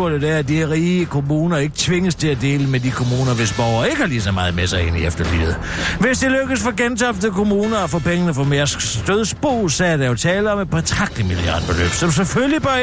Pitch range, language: 120-200 Hz, Danish